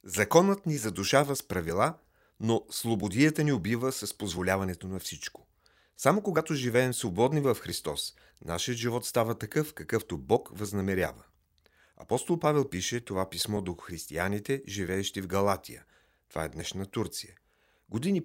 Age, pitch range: 40-59, 95-125 Hz